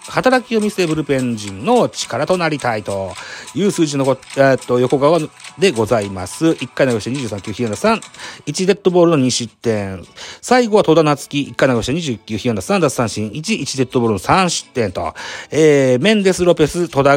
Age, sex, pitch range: 40-59, male, 115-170 Hz